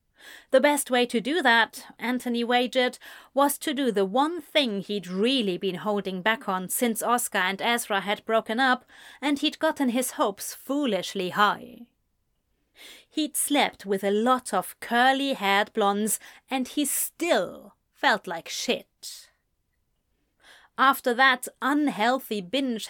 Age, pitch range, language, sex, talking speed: 30-49, 205-265 Hz, English, female, 135 wpm